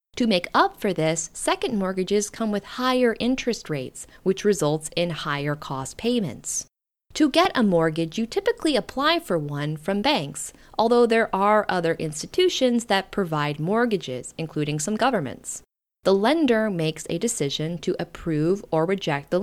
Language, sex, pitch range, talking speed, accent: English, female, 165-240 Hz, 155 wpm, American